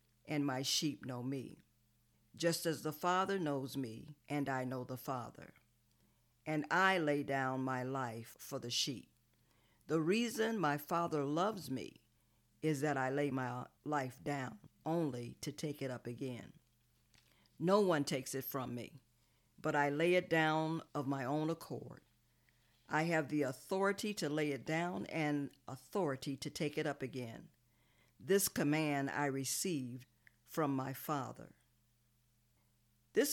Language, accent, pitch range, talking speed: English, American, 120-165 Hz, 150 wpm